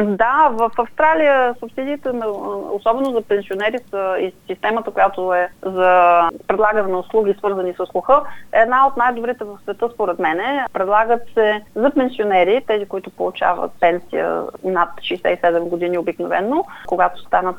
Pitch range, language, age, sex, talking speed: 180-230 Hz, Bulgarian, 30-49, female, 145 wpm